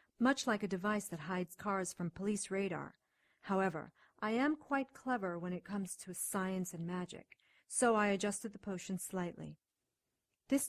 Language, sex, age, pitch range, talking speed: English, female, 40-59, 170-205 Hz, 165 wpm